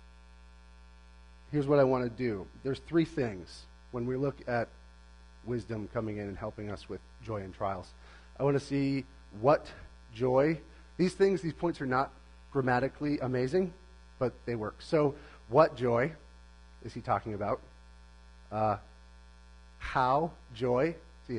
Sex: male